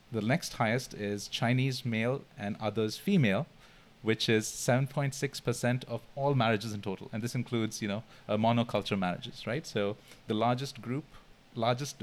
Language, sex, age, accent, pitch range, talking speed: English, male, 30-49, Indian, 105-130 Hz, 155 wpm